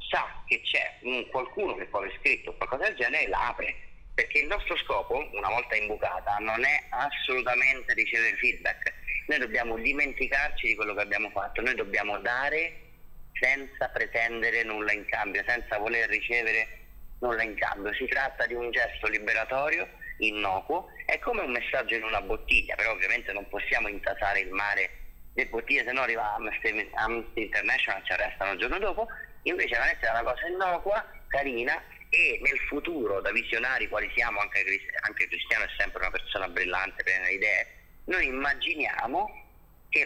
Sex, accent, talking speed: male, native, 165 wpm